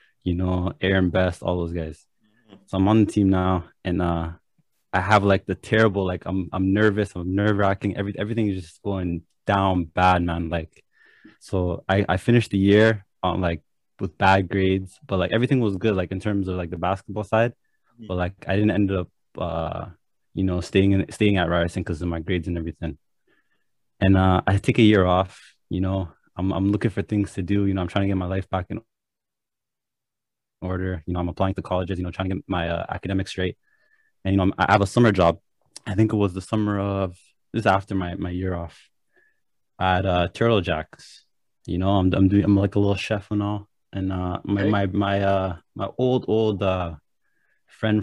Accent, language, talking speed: American, English, 210 wpm